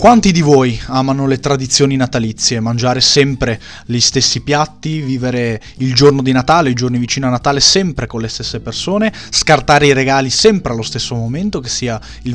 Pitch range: 120-145 Hz